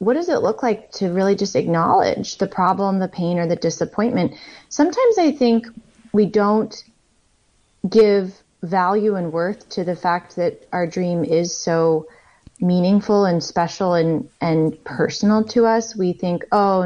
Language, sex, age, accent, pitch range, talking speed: English, female, 30-49, American, 165-200 Hz, 155 wpm